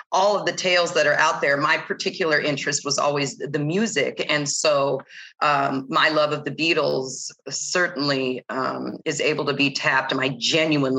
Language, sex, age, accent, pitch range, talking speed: English, female, 40-59, American, 145-185 Hz, 175 wpm